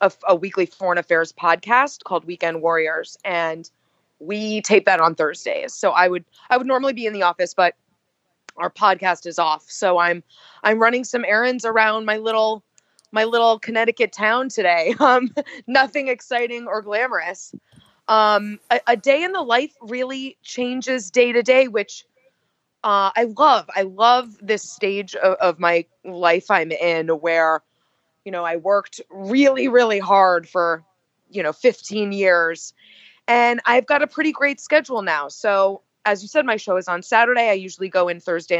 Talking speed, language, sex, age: 170 wpm, English, female, 20-39